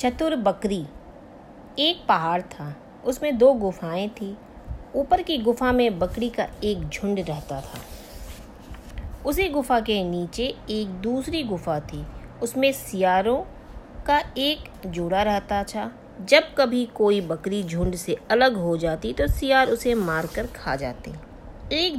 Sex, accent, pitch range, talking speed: female, native, 185-260 Hz, 135 wpm